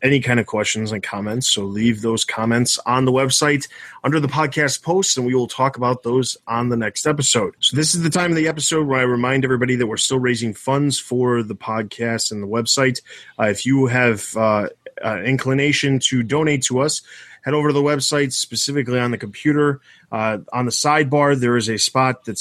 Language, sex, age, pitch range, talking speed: English, male, 20-39, 115-135 Hz, 215 wpm